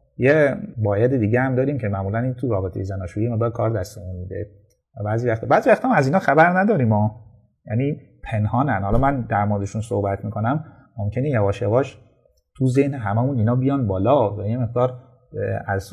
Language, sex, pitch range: Persian, male, 100-130 Hz